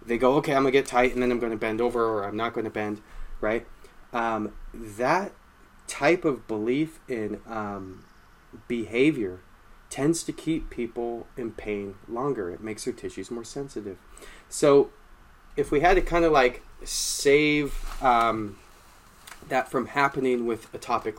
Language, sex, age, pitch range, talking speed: English, male, 30-49, 110-135 Hz, 165 wpm